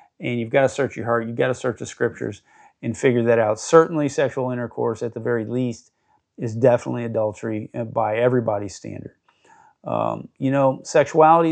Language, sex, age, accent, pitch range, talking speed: English, male, 50-69, American, 130-155 Hz, 175 wpm